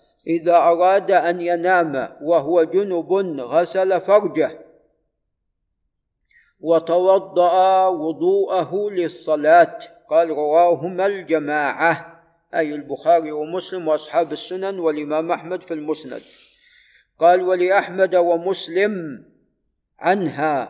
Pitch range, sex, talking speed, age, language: 160-185 Hz, male, 80 wpm, 50-69, Arabic